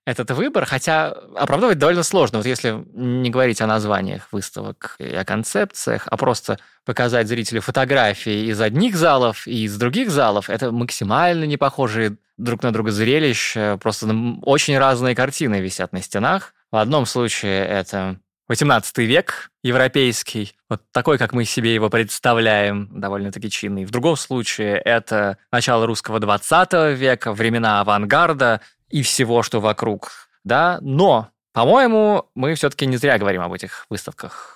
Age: 20-39